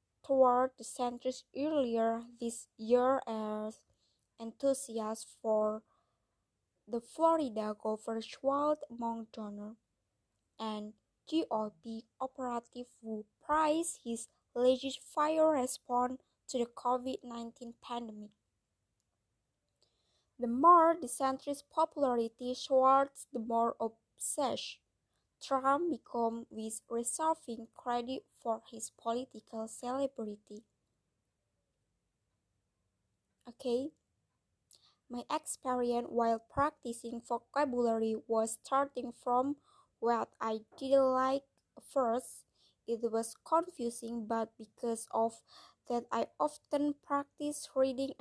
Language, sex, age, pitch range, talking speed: English, female, 20-39, 225-275 Hz, 85 wpm